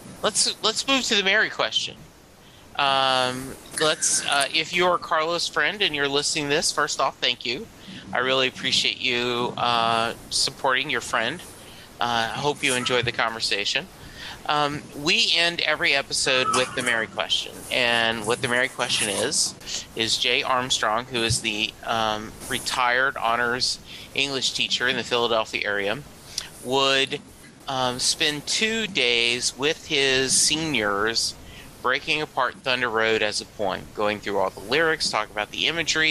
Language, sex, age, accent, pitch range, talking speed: English, male, 40-59, American, 115-150 Hz, 155 wpm